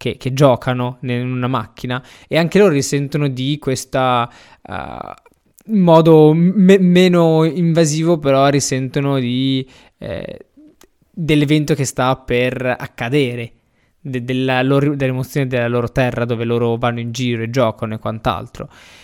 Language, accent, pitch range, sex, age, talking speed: Italian, native, 125-155 Hz, male, 20-39, 135 wpm